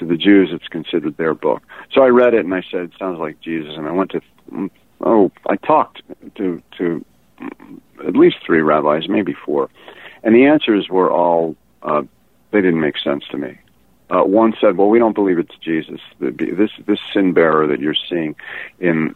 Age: 50-69